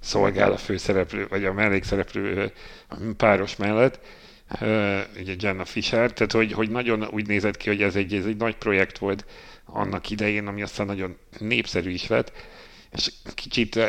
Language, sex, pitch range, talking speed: Hungarian, male, 95-110 Hz, 155 wpm